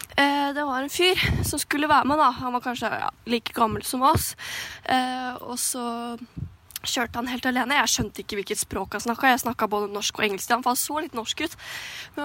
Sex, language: female, English